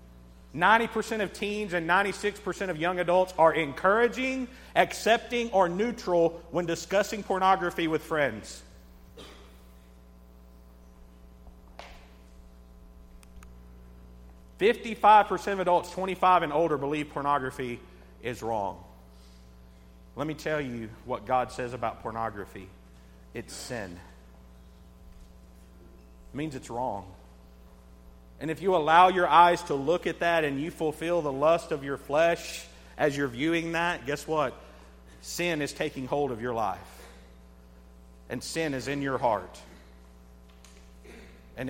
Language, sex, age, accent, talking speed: English, male, 50-69, American, 115 wpm